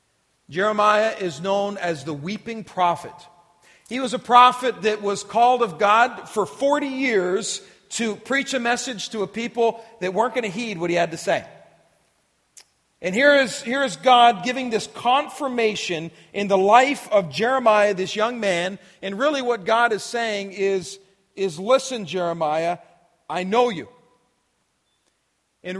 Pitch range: 180-240 Hz